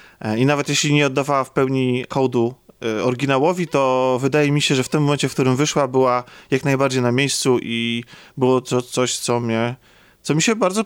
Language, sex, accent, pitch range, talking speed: Polish, male, native, 130-160 Hz, 195 wpm